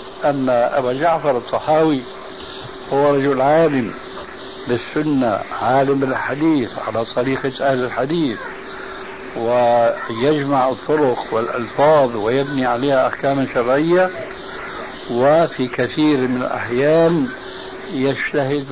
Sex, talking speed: male, 85 wpm